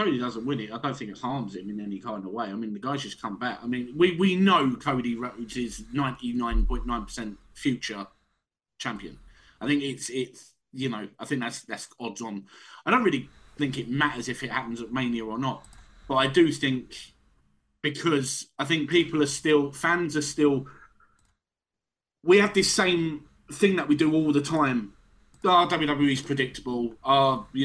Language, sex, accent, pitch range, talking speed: English, male, British, 125-150 Hz, 190 wpm